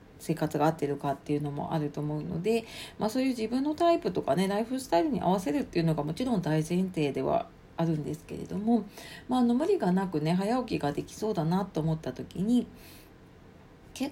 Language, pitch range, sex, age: Japanese, 160-235 Hz, female, 40-59